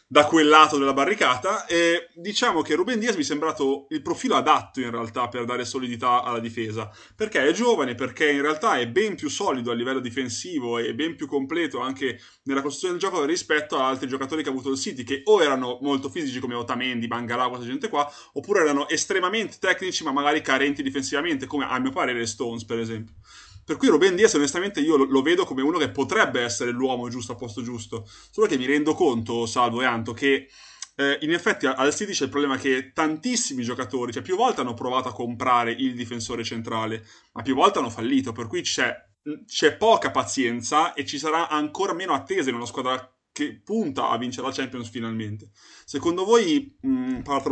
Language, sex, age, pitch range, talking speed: Italian, male, 20-39, 125-160 Hz, 200 wpm